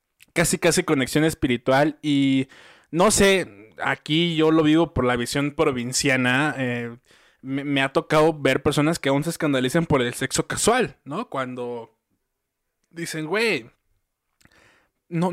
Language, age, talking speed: Spanish, 20-39, 135 wpm